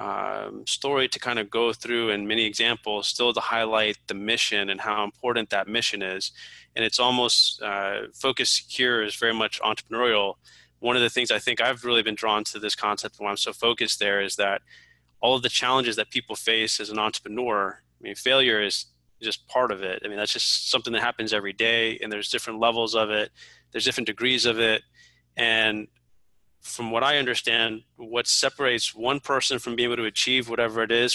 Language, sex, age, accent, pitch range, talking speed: English, male, 20-39, American, 105-120 Hz, 205 wpm